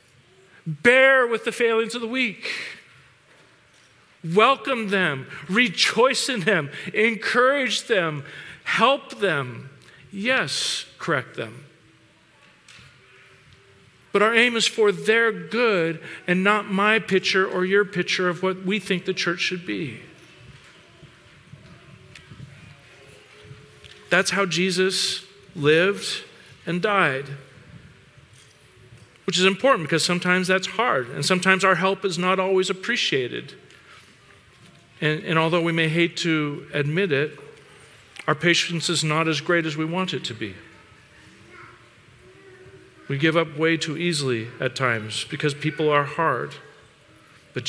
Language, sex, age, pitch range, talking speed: English, male, 50-69, 150-200 Hz, 120 wpm